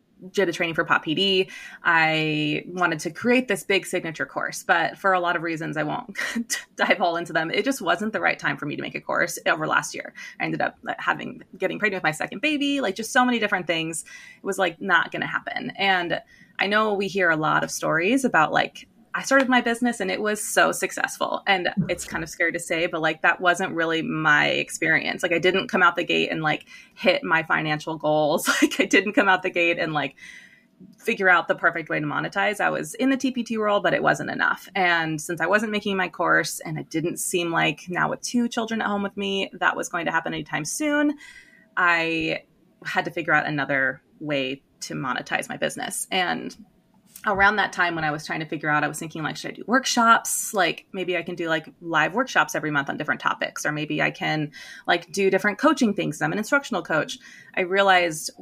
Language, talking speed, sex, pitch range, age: English, 230 wpm, female, 165-215 Hz, 20-39